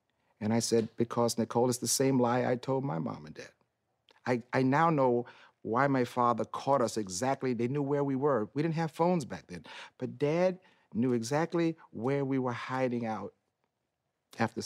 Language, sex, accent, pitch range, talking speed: English, male, American, 95-130 Hz, 190 wpm